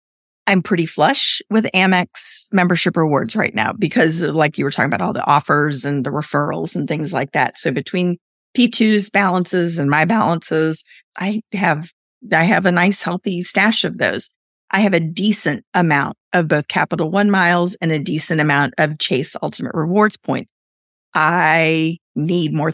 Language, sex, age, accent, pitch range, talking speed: English, female, 40-59, American, 150-195 Hz, 170 wpm